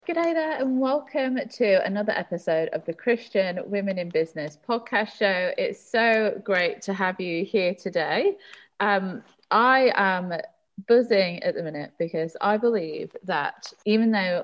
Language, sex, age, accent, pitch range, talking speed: English, female, 20-39, British, 155-210 Hz, 150 wpm